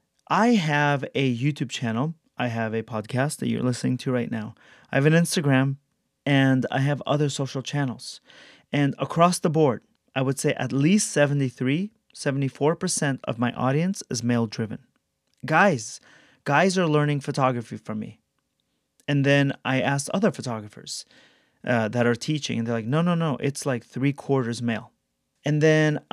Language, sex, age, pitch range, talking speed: English, male, 30-49, 125-155 Hz, 165 wpm